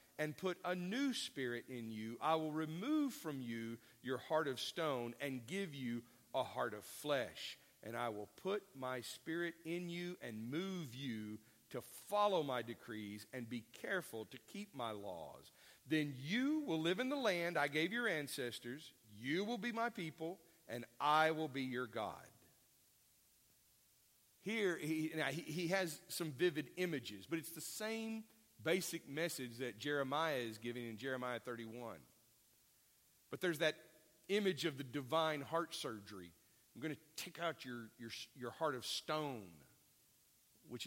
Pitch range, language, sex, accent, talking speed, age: 120-165 Hz, English, male, American, 160 wpm, 50-69